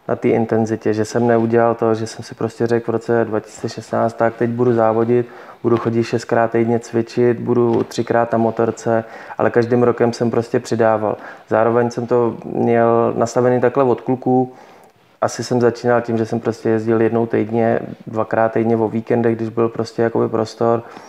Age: 20-39